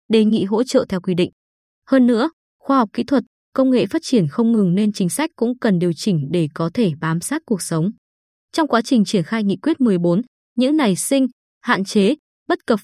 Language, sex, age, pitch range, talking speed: Vietnamese, female, 20-39, 190-250 Hz, 225 wpm